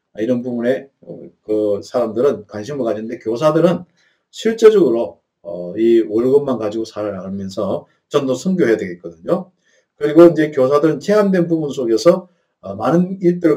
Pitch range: 125-180 Hz